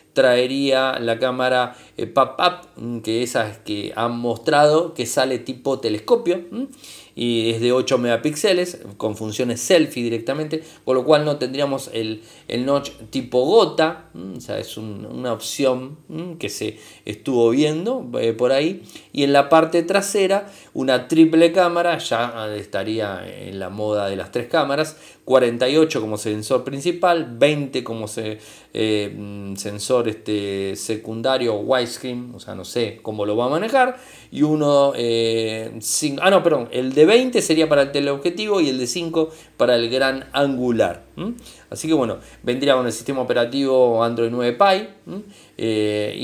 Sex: male